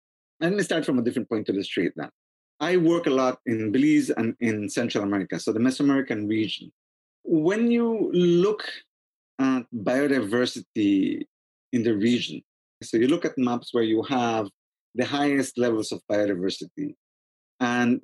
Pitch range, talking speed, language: 105-160 Hz, 155 wpm, English